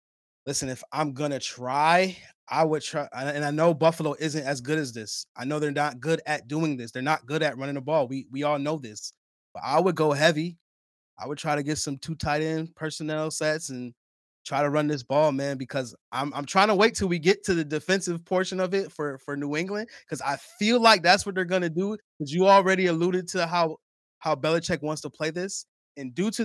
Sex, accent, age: male, American, 20-39